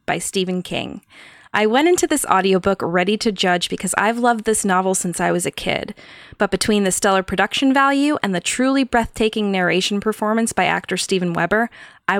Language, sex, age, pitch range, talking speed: English, female, 20-39, 180-245 Hz, 185 wpm